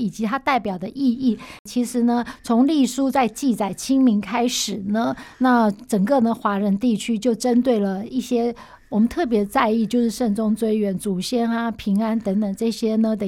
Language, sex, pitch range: Chinese, female, 210-260 Hz